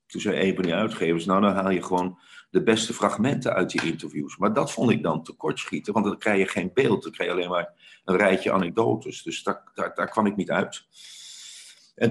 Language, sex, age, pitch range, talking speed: Dutch, male, 50-69, 90-125 Hz, 245 wpm